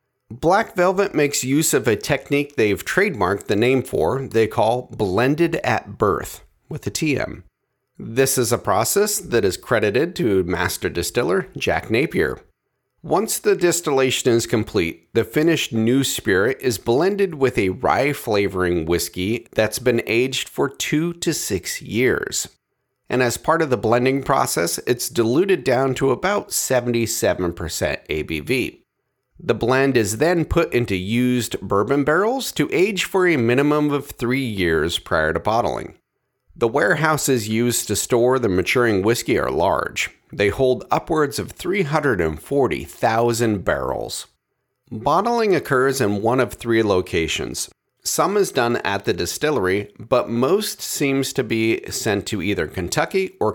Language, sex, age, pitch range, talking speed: English, male, 40-59, 110-145 Hz, 145 wpm